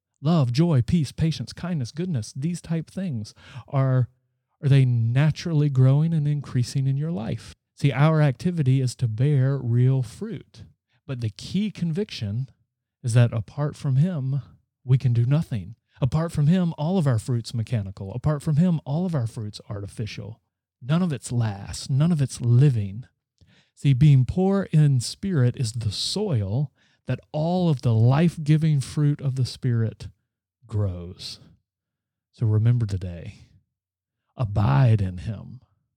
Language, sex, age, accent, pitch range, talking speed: English, male, 40-59, American, 110-145 Hz, 145 wpm